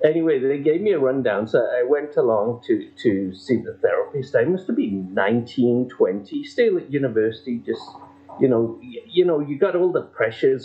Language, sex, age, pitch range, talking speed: English, male, 50-69, 105-155 Hz, 195 wpm